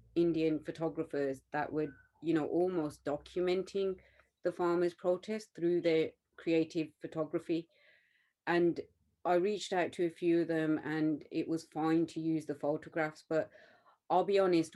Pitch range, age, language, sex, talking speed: 150-170 Hz, 30-49, English, female, 145 wpm